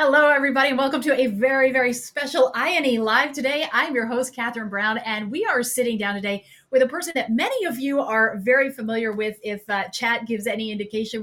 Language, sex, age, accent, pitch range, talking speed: English, female, 30-49, American, 210-265 Hz, 215 wpm